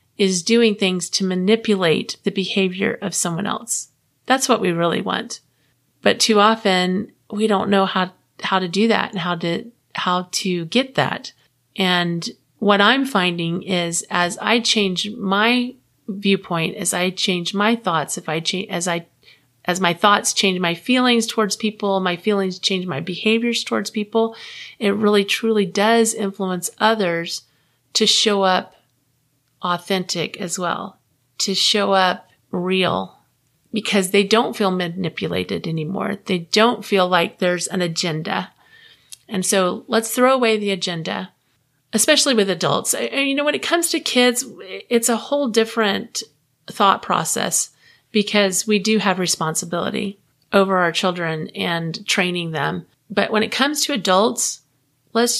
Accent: American